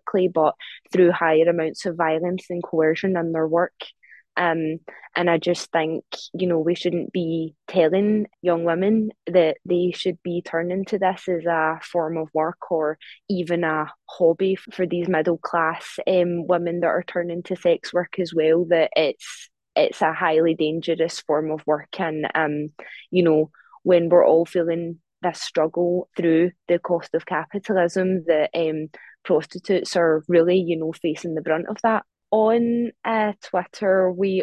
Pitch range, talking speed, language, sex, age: 165-185 Hz, 160 wpm, English, female, 20-39